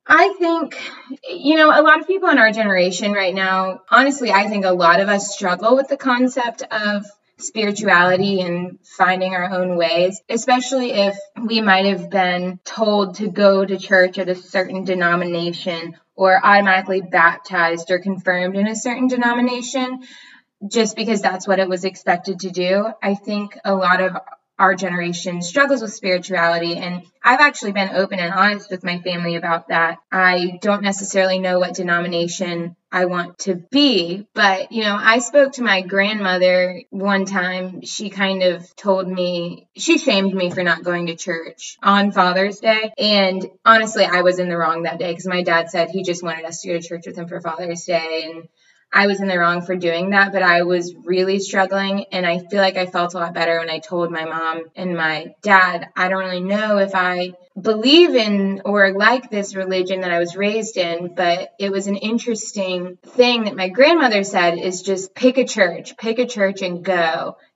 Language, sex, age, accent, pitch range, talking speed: English, female, 20-39, American, 180-210 Hz, 190 wpm